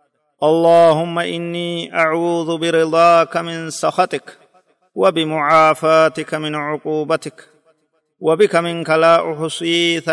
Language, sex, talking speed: Amharic, male, 75 wpm